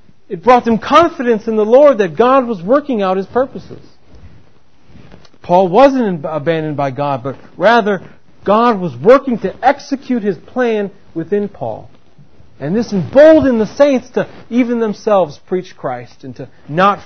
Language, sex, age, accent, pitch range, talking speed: English, male, 40-59, American, 170-240 Hz, 150 wpm